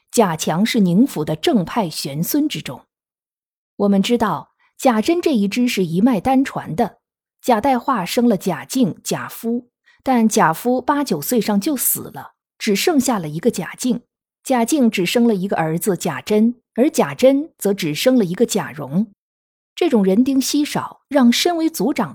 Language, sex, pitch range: Chinese, female, 190-255 Hz